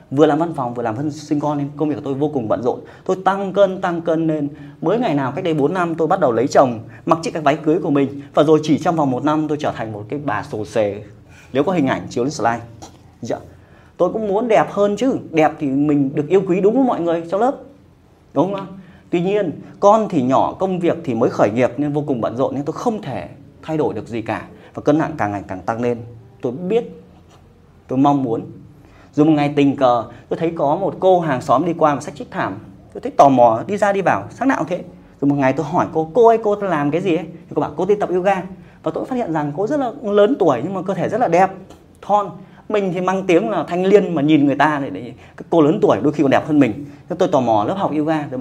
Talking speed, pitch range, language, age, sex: 270 wpm, 140-185 Hz, Vietnamese, 20-39, male